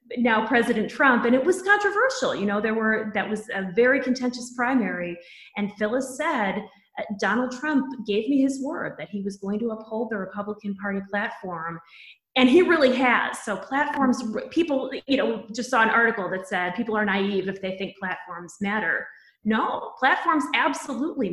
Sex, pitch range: female, 200-250 Hz